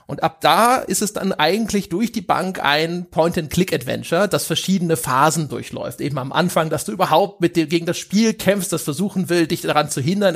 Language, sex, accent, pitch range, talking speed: German, male, German, 145-180 Hz, 205 wpm